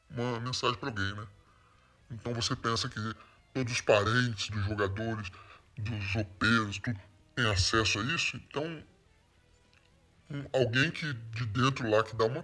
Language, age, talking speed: Portuguese, 20-39, 150 wpm